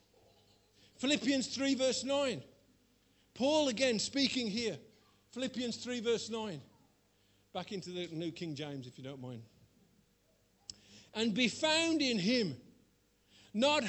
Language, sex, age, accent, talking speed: English, male, 50-69, British, 120 wpm